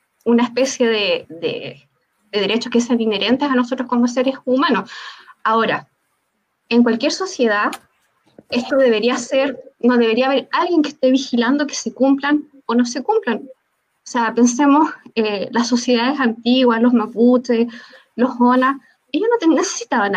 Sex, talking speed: female, 150 wpm